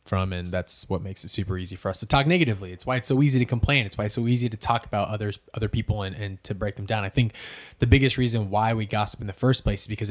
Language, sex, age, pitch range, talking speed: English, male, 20-39, 95-115 Hz, 305 wpm